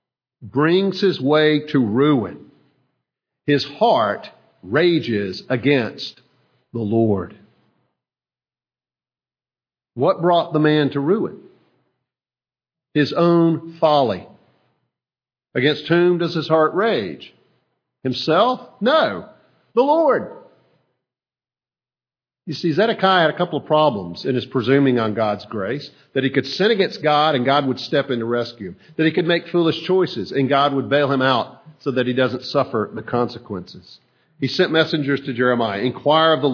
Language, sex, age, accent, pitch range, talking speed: English, male, 50-69, American, 125-155 Hz, 140 wpm